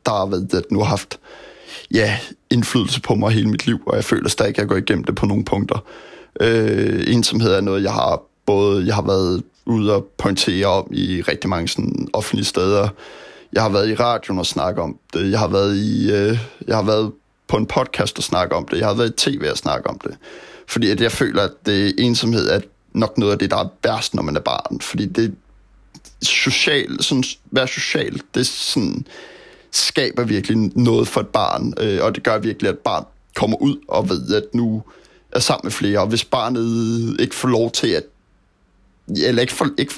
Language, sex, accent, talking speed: Danish, male, native, 210 wpm